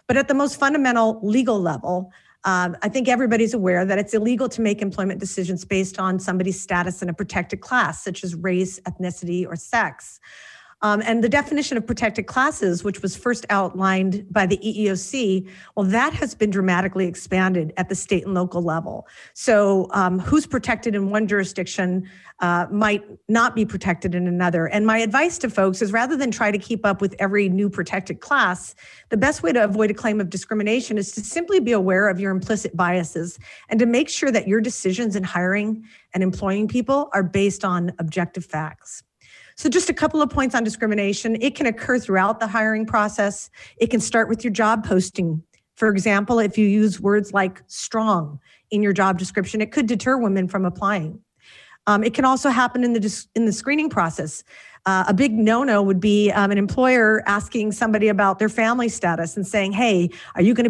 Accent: American